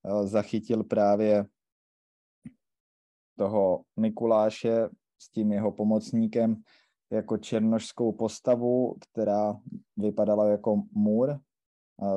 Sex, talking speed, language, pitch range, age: male, 80 wpm, Czech, 105-115 Hz, 20-39